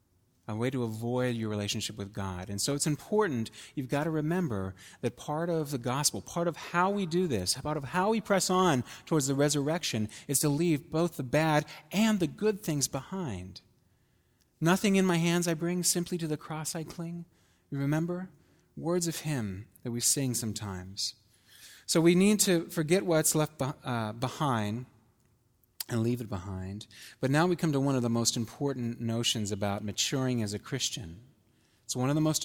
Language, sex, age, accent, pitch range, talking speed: English, male, 40-59, American, 105-155 Hz, 185 wpm